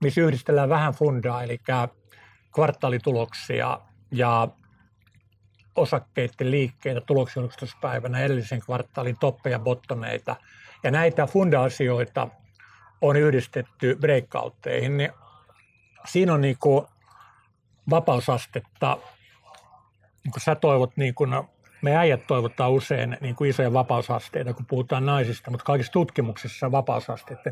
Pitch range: 120-145 Hz